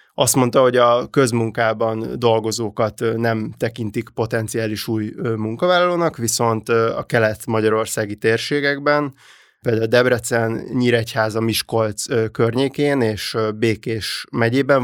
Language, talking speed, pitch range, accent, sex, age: English, 95 wpm, 110-120 Hz, Finnish, male, 20-39